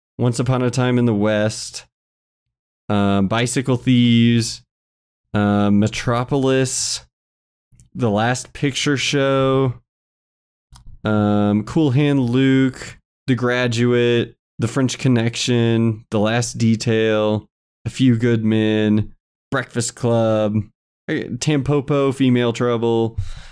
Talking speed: 95 wpm